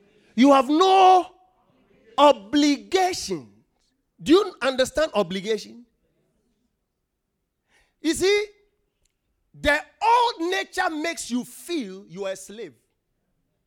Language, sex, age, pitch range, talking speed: English, male, 40-59, 250-365 Hz, 90 wpm